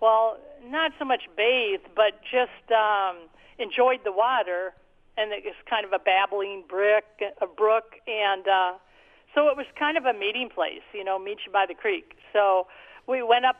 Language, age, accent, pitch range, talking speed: English, 50-69, American, 205-255 Hz, 175 wpm